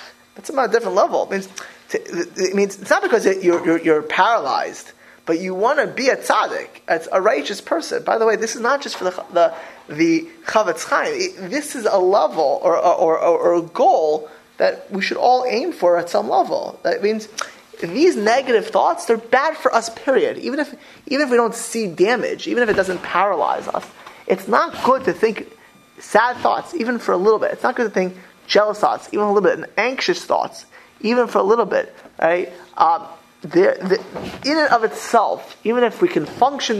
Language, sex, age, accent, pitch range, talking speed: English, male, 30-49, American, 190-295 Hz, 205 wpm